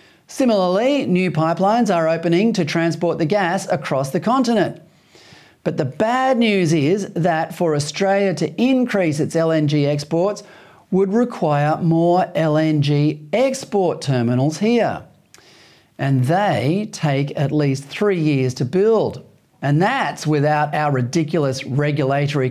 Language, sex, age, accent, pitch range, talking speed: English, male, 40-59, Australian, 145-205 Hz, 125 wpm